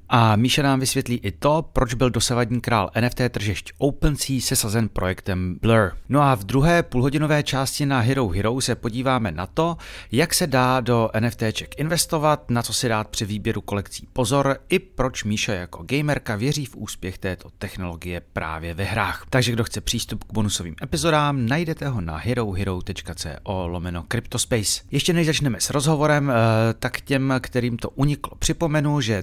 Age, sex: 30-49, male